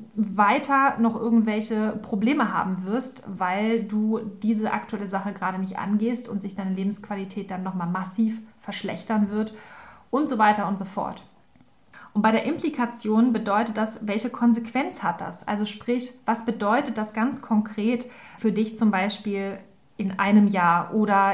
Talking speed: 150 wpm